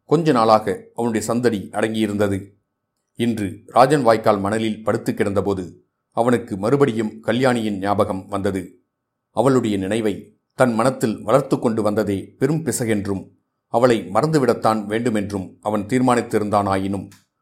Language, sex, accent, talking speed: Tamil, male, native, 100 wpm